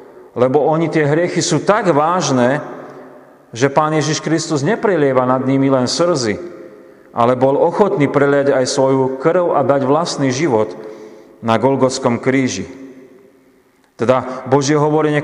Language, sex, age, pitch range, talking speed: Slovak, male, 40-59, 120-145 Hz, 130 wpm